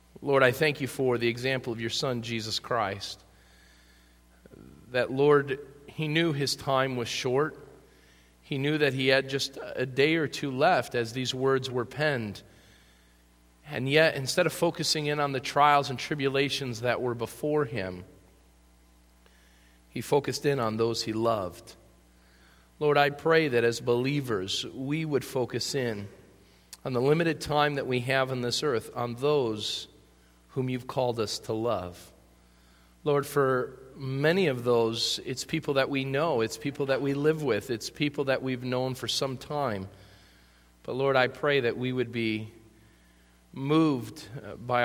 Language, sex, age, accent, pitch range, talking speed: English, male, 40-59, American, 100-140 Hz, 160 wpm